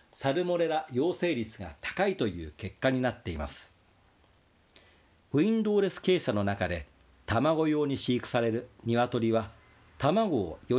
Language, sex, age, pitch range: Japanese, male, 40-59, 95-150 Hz